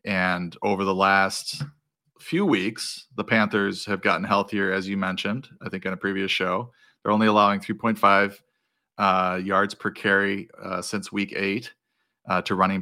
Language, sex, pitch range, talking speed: English, male, 95-110 Hz, 160 wpm